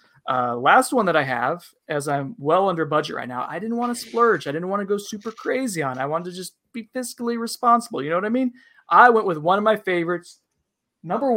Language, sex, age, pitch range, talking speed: English, male, 20-39, 155-200 Hz, 245 wpm